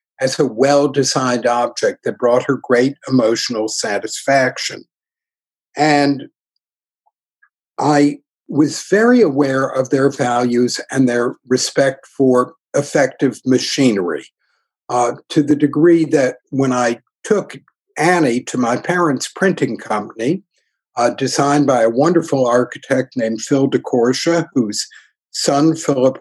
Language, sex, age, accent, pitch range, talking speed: English, male, 60-79, American, 130-160 Hz, 115 wpm